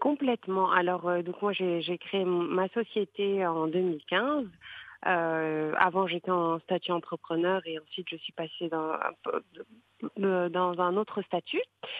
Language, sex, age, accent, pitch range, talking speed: English, female, 40-59, French, 175-210 Hz, 140 wpm